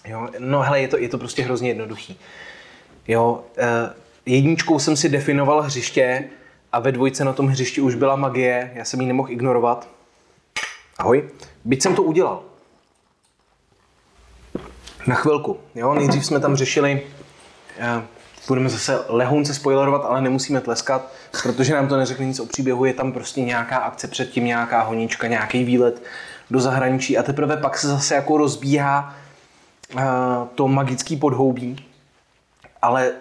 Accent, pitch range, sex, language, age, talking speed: native, 125-145 Hz, male, Czech, 20-39, 145 wpm